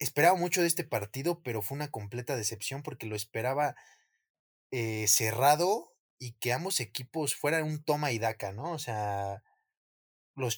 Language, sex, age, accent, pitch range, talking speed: Spanish, male, 20-39, Mexican, 105-145 Hz, 160 wpm